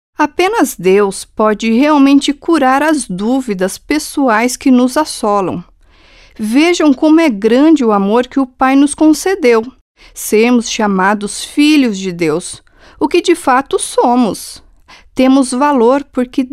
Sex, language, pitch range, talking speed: female, Portuguese, 210-295 Hz, 125 wpm